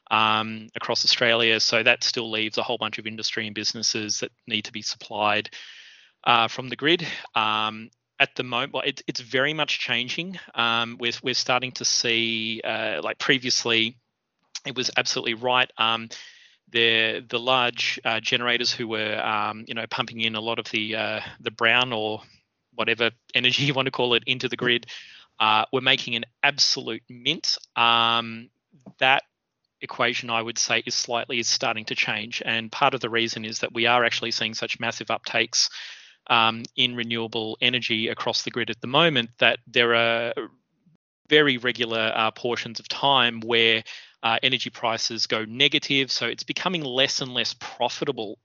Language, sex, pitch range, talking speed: English, male, 110-125 Hz, 175 wpm